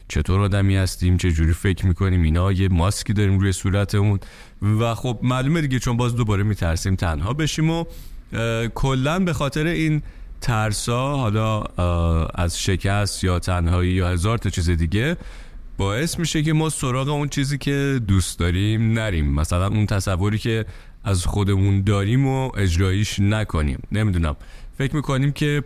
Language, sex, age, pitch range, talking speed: Persian, male, 30-49, 95-120 Hz, 145 wpm